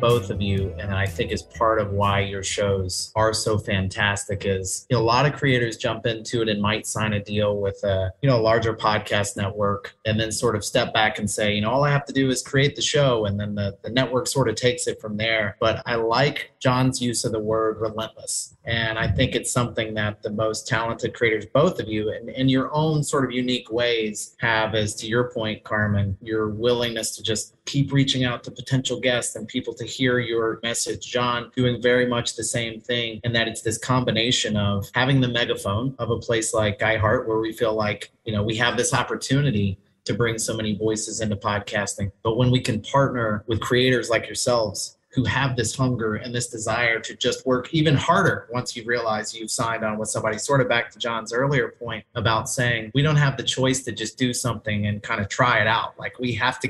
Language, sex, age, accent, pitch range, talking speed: English, male, 30-49, American, 110-125 Hz, 230 wpm